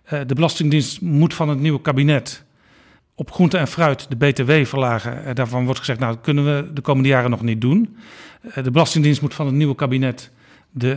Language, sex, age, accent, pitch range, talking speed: Dutch, male, 50-69, Dutch, 130-165 Hz, 210 wpm